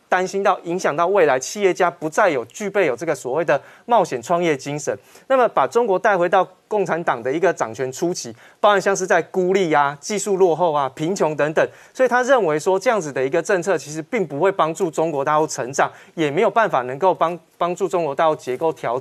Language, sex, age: Chinese, male, 30-49